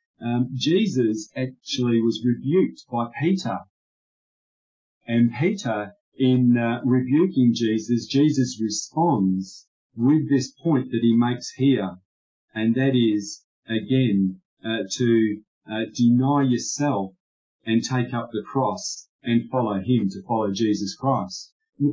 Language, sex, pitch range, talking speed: English, male, 110-135 Hz, 120 wpm